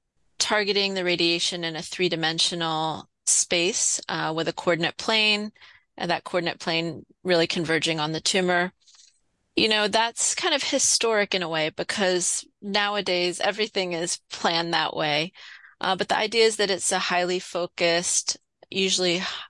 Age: 30-49